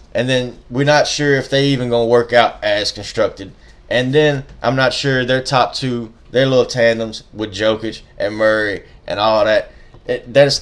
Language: English